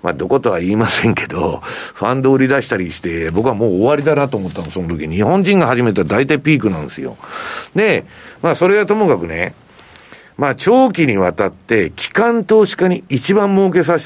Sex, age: male, 50-69